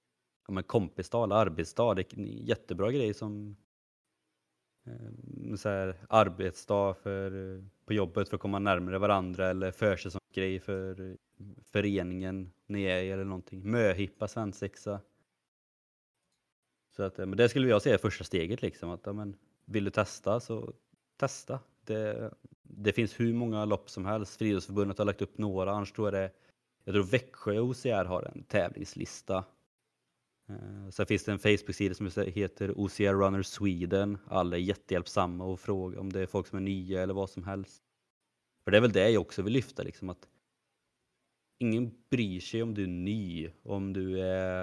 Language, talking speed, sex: Swedish, 165 wpm, male